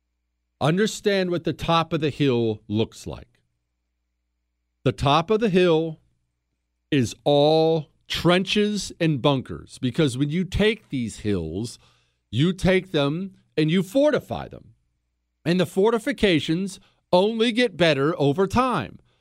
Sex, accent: male, American